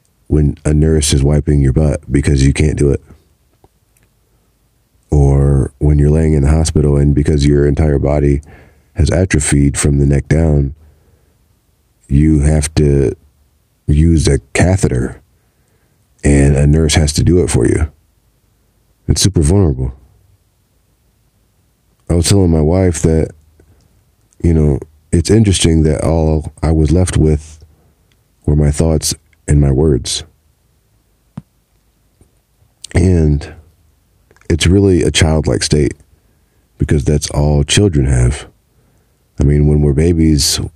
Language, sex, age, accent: English, male, 40-59, American